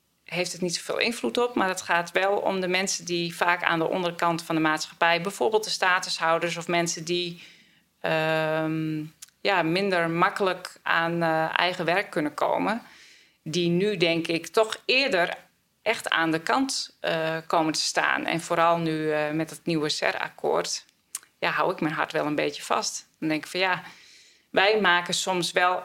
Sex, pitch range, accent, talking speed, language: female, 155-180 Hz, Dutch, 175 wpm, Dutch